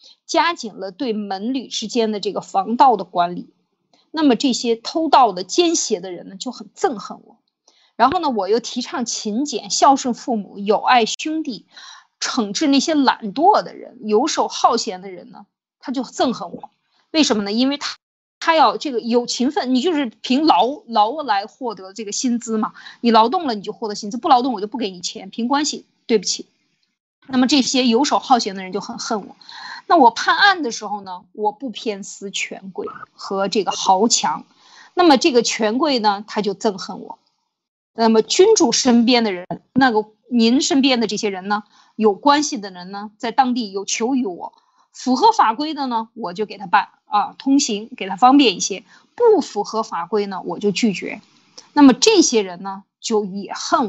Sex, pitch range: female, 210-275 Hz